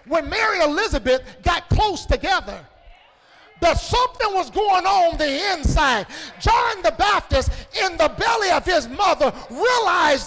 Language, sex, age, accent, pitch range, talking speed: English, male, 50-69, American, 335-410 Hz, 140 wpm